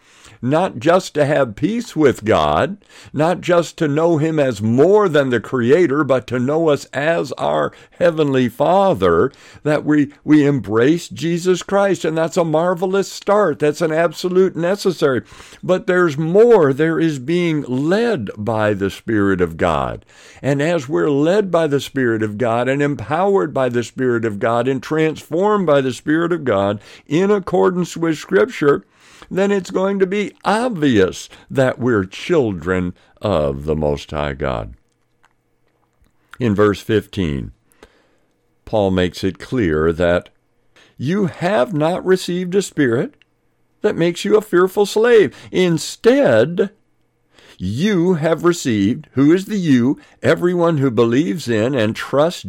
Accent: American